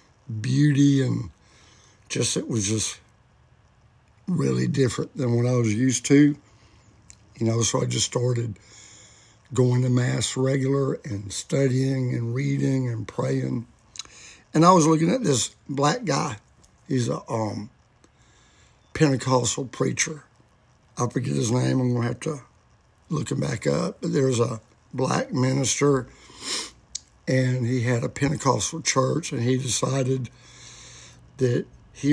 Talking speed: 135 wpm